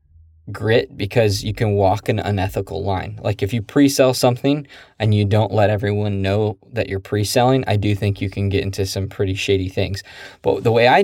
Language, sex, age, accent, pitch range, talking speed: English, male, 20-39, American, 100-115 Hz, 200 wpm